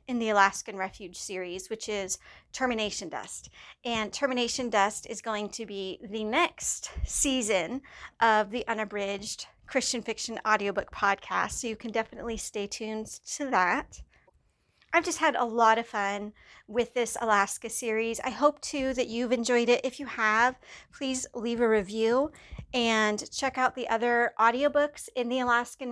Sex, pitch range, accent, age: female, 220-255 Hz, American, 40-59